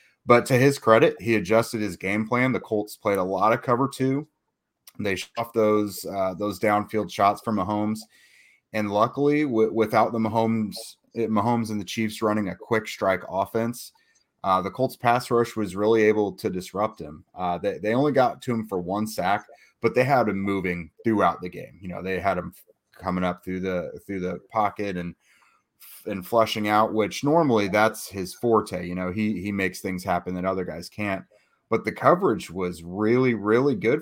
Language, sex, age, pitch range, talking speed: English, male, 30-49, 95-115 Hz, 195 wpm